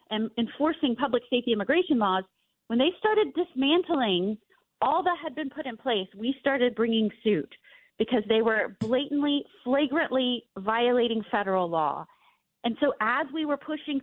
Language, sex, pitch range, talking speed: English, female, 215-295 Hz, 150 wpm